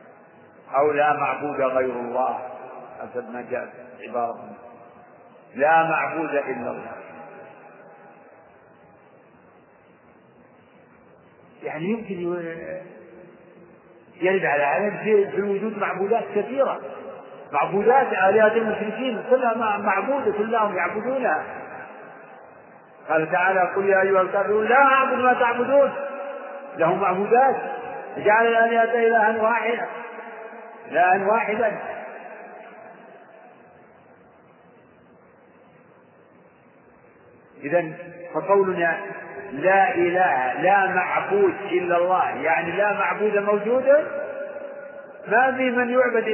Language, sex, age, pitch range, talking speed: Arabic, male, 50-69, 165-230 Hz, 85 wpm